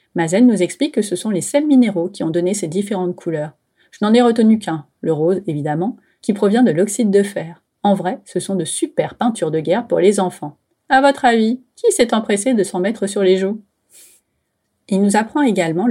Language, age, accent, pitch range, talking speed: French, 30-49, French, 170-225 Hz, 215 wpm